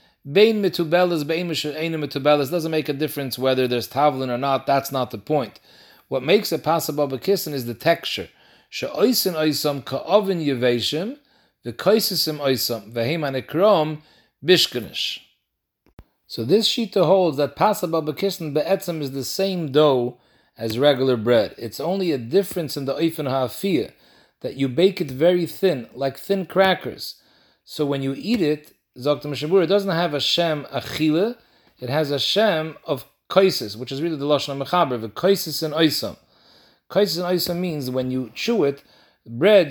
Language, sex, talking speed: English, male, 135 wpm